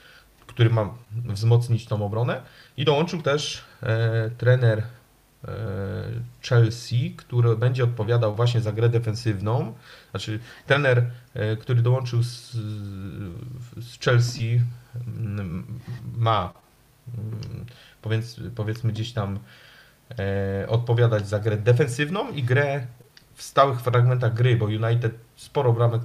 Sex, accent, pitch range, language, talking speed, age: male, native, 110-125 Hz, Polish, 95 wpm, 40-59